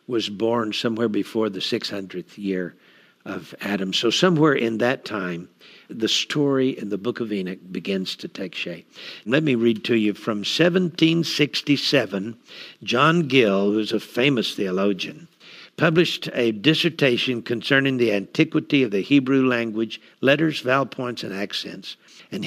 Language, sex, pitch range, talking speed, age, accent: English, male, 110-145 Hz, 145 wpm, 60-79, American